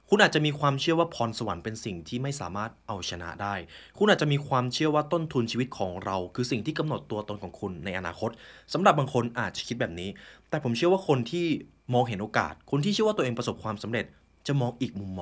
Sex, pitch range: male, 100-145 Hz